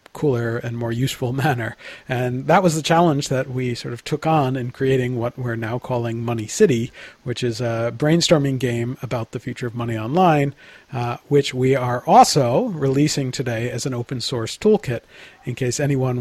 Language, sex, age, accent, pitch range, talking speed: English, male, 40-59, American, 120-145 Hz, 185 wpm